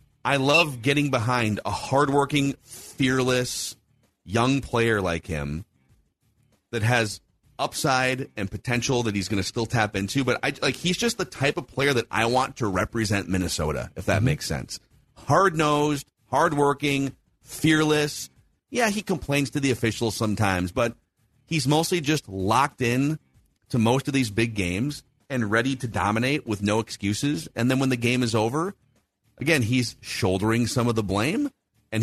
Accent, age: American, 40-59